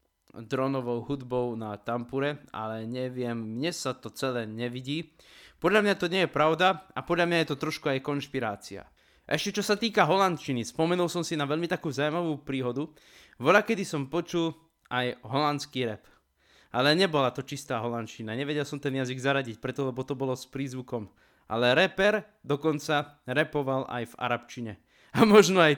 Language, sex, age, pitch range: Slovak, male, 20-39, 130-165 Hz